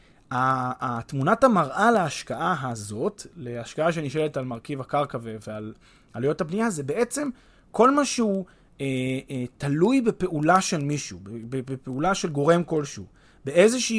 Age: 30-49